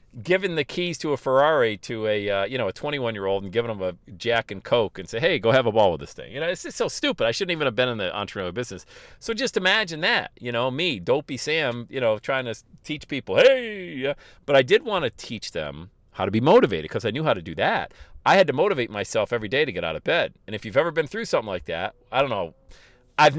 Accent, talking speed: American, 270 wpm